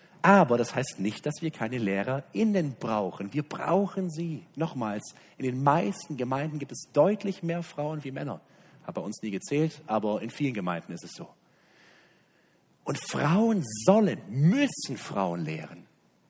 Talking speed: 155 wpm